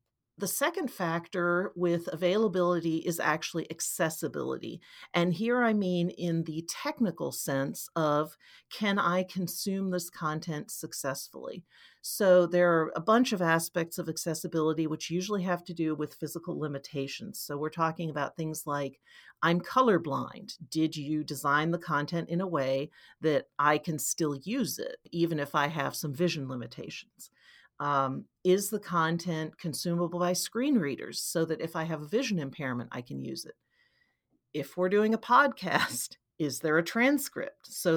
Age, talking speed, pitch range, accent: 40-59, 155 wpm, 155-185 Hz, American